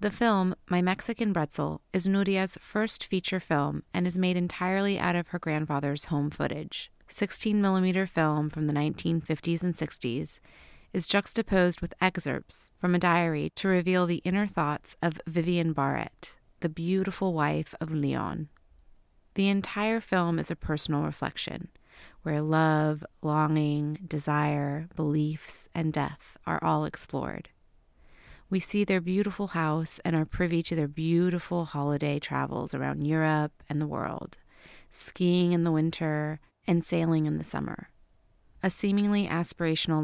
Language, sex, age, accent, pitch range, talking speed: English, female, 30-49, American, 150-180 Hz, 140 wpm